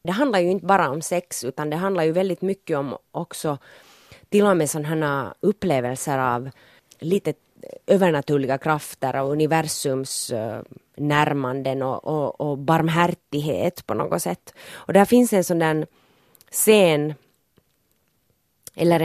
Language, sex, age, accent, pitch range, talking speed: Swedish, female, 30-49, Finnish, 140-170 Hz, 135 wpm